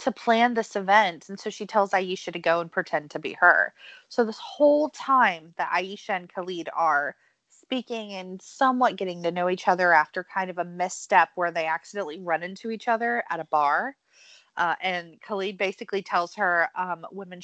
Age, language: 20-39, English